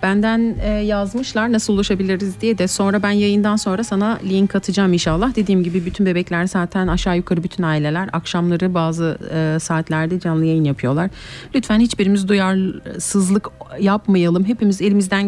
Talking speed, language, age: 140 wpm, German, 40-59